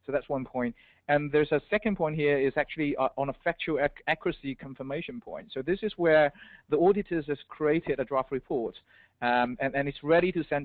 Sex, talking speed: male, 215 wpm